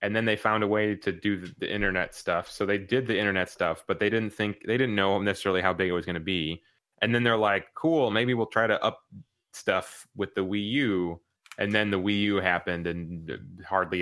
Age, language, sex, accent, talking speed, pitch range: 20-39, English, male, American, 235 wpm, 85-100 Hz